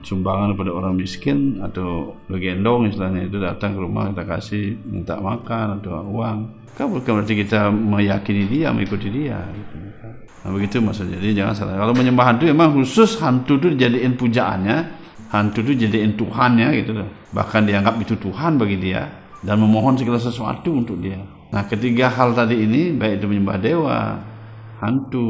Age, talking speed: 50-69, 160 wpm